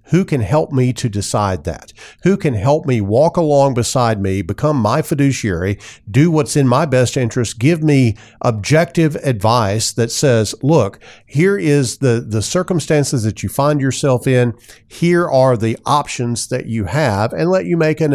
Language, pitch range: English, 110-150 Hz